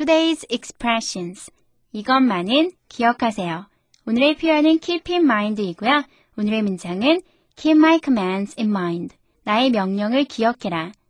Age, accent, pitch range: 20-39, native, 215-315 Hz